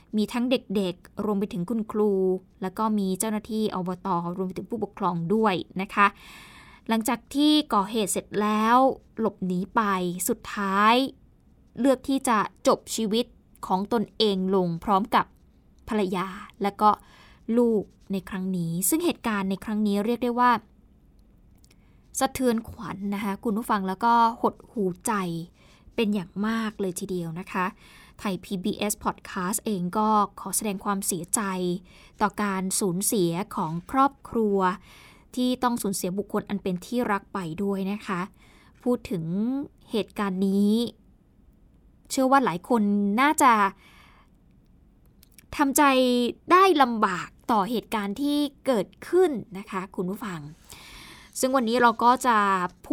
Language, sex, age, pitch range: Thai, female, 20-39, 190-235 Hz